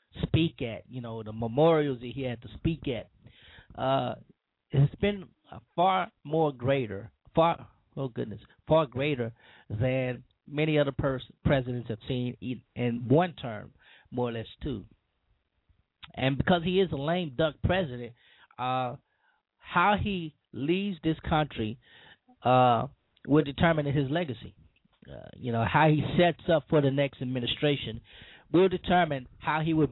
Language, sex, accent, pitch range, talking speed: English, male, American, 120-155 Hz, 145 wpm